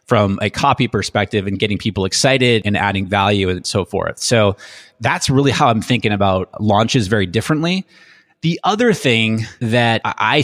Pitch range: 105-125 Hz